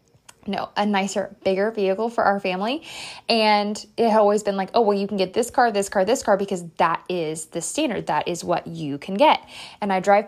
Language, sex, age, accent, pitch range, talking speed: English, female, 20-39, American, 195-260 Hz, 230 wpm